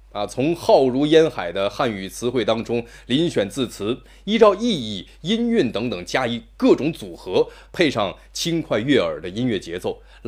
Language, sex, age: Chinese, male, 20-39